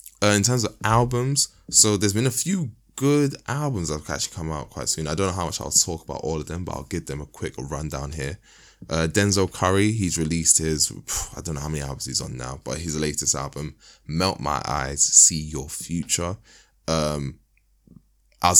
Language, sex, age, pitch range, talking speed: English, male, 10-29, 75-95 Hz, 210 wpm